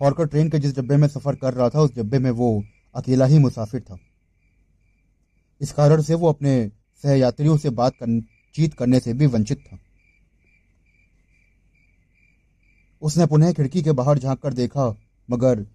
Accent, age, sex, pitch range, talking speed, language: native, 30-49, male, 95-135 Hz, 150 wpm, Hindi